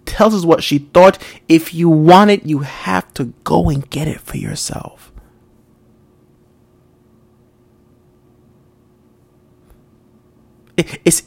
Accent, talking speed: American, 100 wpm